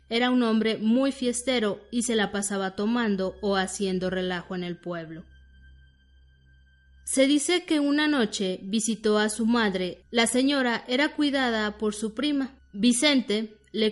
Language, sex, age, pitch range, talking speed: Spanish, female, 20-39, 200-245 Hz, 145 wpm